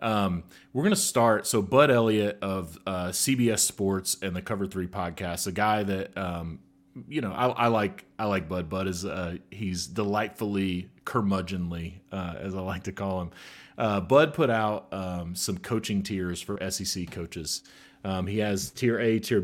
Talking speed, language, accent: 180 wpm, English, American